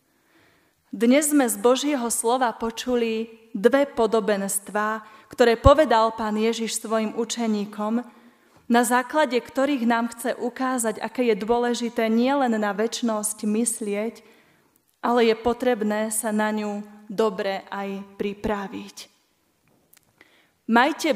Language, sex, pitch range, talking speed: Slovak, female, 210-245 Hz, 105 wpm